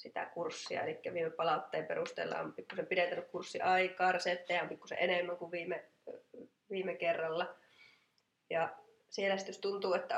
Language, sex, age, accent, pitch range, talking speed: Finnish, female, 20-39, native, 170-205 Hz, 135 wpm